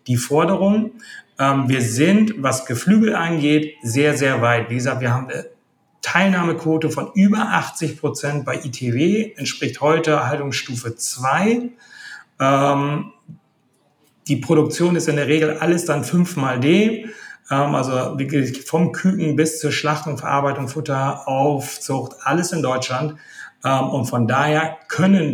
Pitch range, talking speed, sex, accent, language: 125-155 Hz, 135 wpm, male, German, German